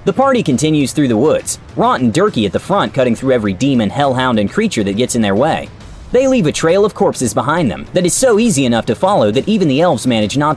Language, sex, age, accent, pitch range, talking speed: English, male, 30-49, American, 120-195 Hz, 255 wpm